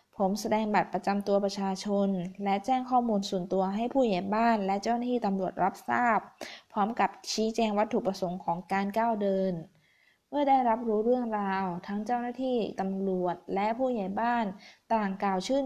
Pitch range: 195-240 Hz